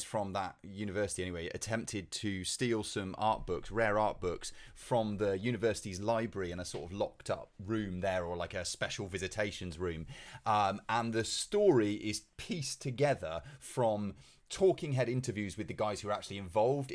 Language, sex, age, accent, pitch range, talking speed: English, male, 30-49, British, 100-125 Hz, 175 wpm